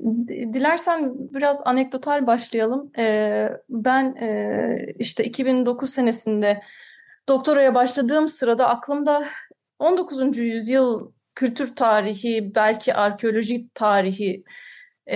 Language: Turkish